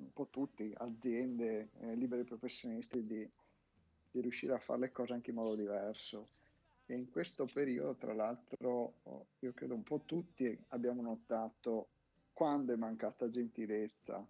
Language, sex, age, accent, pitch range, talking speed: Italian, male, 50-69, native, 115-130 Hz, 145 wpm